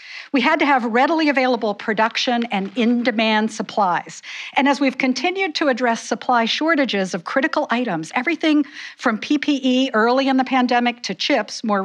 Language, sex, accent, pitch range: English, female, American, 210-270 Hz